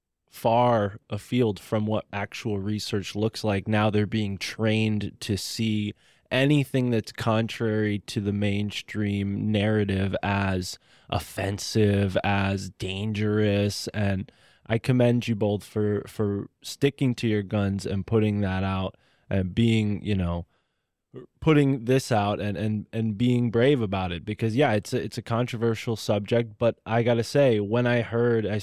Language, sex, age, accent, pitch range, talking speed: English, male, 20-39, American, 100-115 Hz, 145 wpm